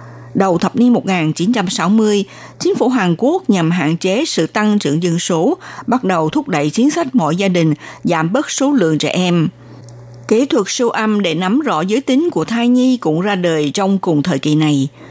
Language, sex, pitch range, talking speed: Vietnamese, female, 160-230 Hz, 205 wpm